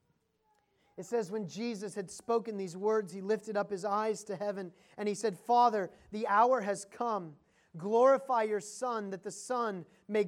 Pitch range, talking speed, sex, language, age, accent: 165-205 Hz, 175 wpm, male, English, 30-49, American